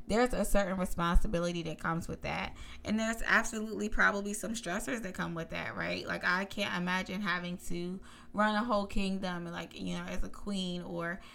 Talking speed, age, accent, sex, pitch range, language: 190 wpm, 20-39, American, female, 175-200 Hz, English